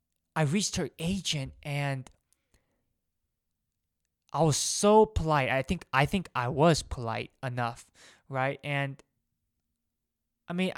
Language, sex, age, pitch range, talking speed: English, male, 20-39, 120-155 Hz, 115 wpm